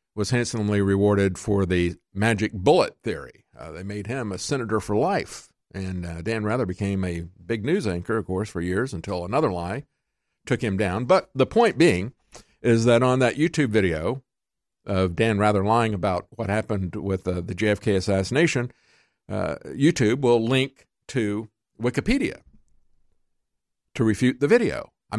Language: English